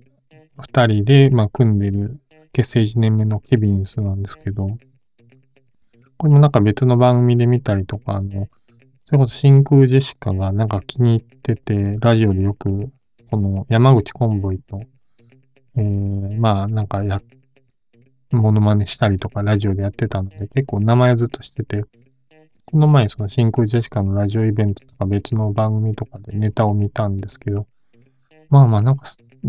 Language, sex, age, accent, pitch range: Japanese, male, 20-39, native, 105-130 Hz